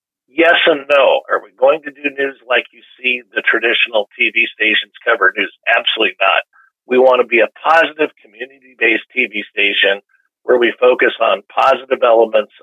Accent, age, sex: American, 50-69, male